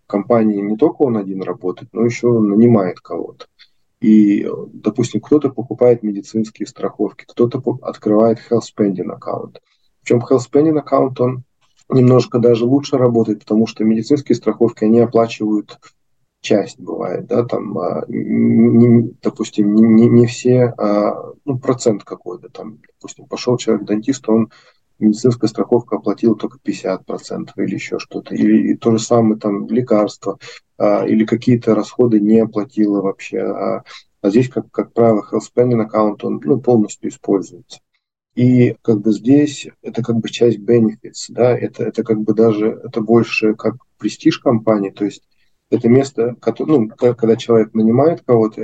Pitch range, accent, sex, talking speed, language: 110-120 Hz, native, male, 150 wpm, Russian